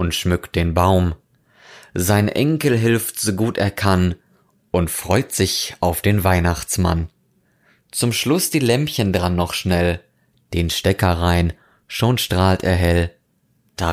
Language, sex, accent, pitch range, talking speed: German, male, German, 85-110 Hz, 140 wpm